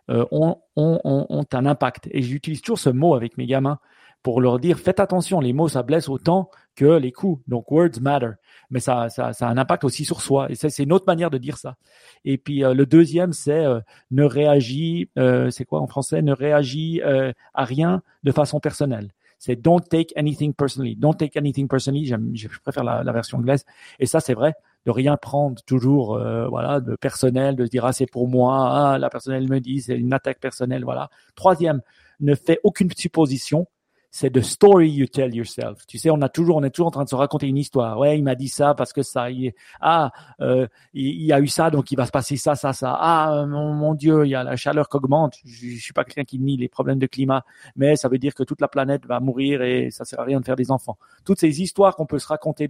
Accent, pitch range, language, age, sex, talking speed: French, 125-150 Hz, French, 40-59, male, 245 wpm